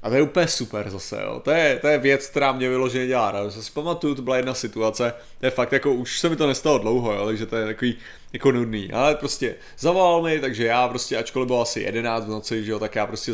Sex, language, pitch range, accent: male, Czech, 115-165 Hz, native